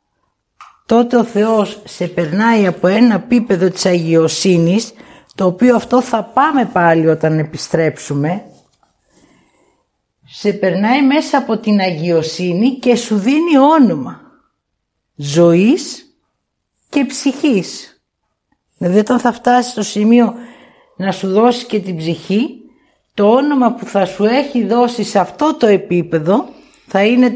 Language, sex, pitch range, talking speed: Greek, female, 180-255 Hz, 120 wpm